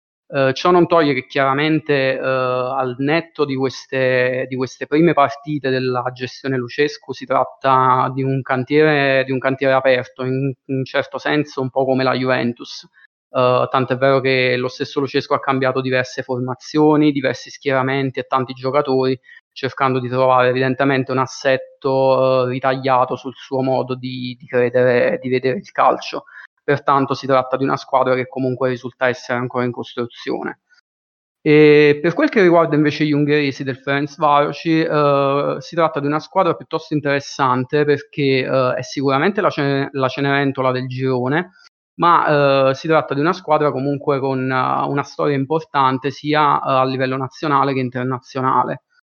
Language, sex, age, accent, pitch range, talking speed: Italian, male, 20-39, native, 130-145 Hz, 165 wpm